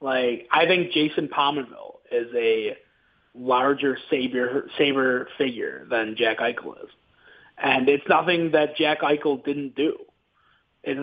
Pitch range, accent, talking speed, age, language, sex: 125-165 Hz, American, 125 wpm, 30-49, English, male